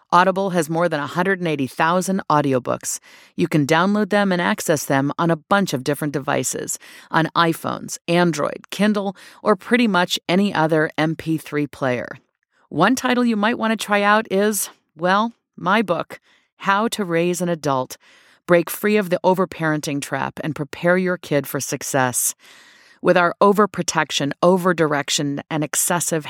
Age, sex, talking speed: 40-59, female, 150 wpm